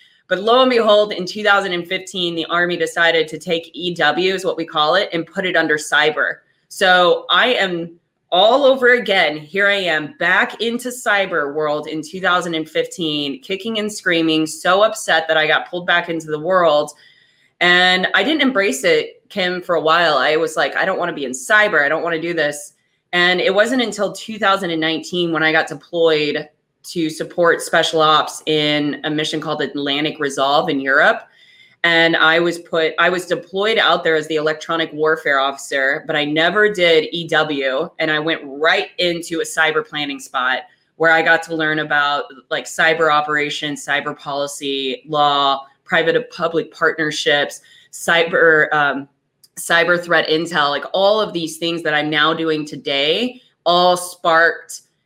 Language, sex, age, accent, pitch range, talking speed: English, female, 20-39, American, 150-180 Hz, 170 wpm